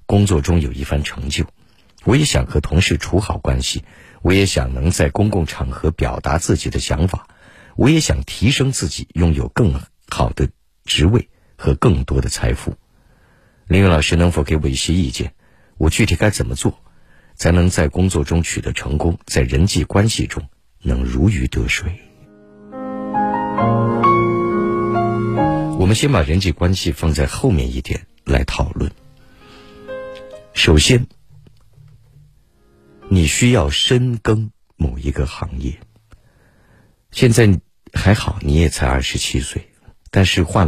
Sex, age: male, 50-69